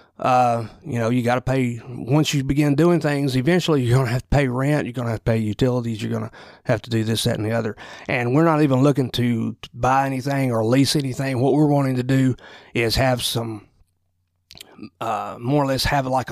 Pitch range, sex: 110-145 Hz, male